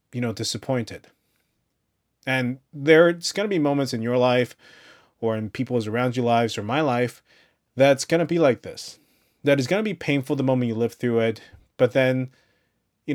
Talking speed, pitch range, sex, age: 190 wpm, 110-145 Hz, male, 30-49